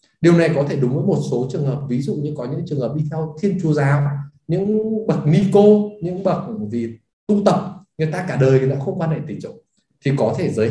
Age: 20-39